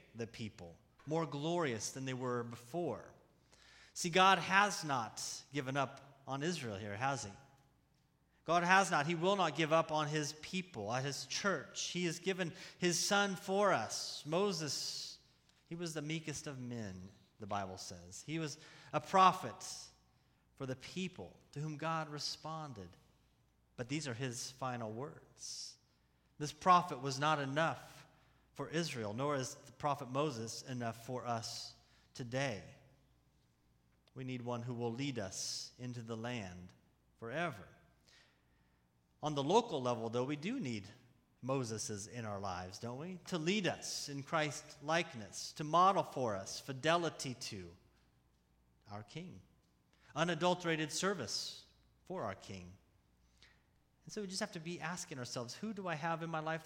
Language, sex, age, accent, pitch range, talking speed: English, male, 30-49, American, 115-165 Hz, 150 wpm